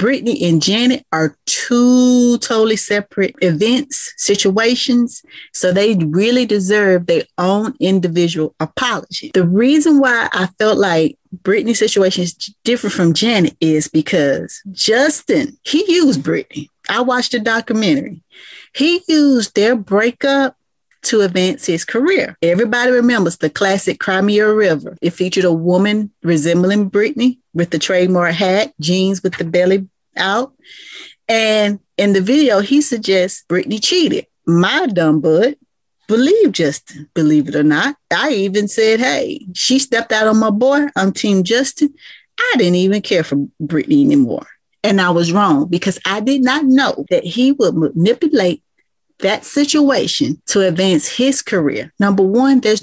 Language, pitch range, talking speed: English, 180-250 Hz, 145 wpm